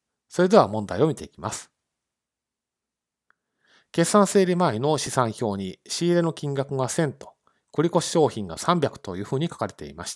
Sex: male